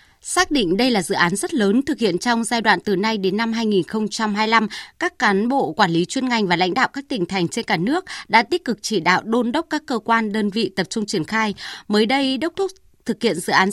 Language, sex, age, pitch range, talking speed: Vietnamese, female, 20-39, 195-255 Hz, 255 wpm